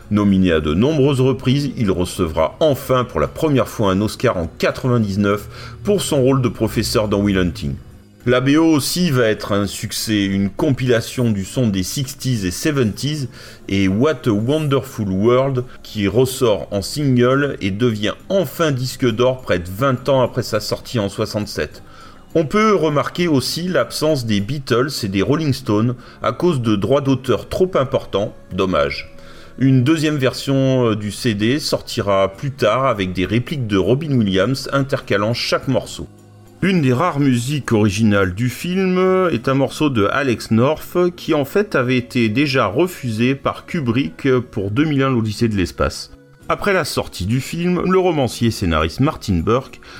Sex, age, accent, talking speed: male, 30-49, French, 160 wpm